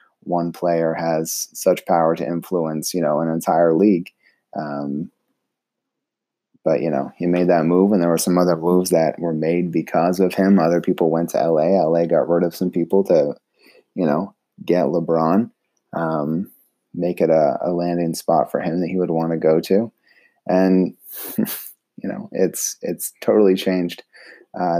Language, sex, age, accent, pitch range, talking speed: English, male, 30-49, American, 80-95 Hz, 175 wpm